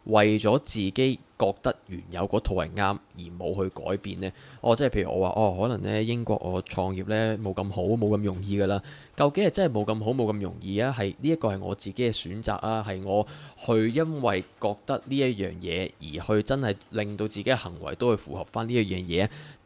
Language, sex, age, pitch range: Chinese, male, 20-39, 95-110 Hz